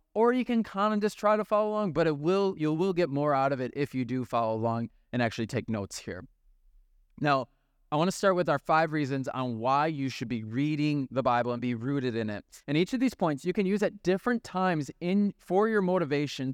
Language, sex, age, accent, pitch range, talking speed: English, male, 20-39, American, 135-180 Hz, 245 wpm